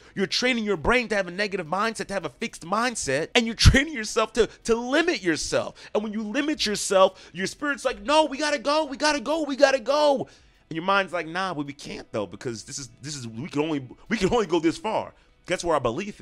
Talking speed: 250 wpm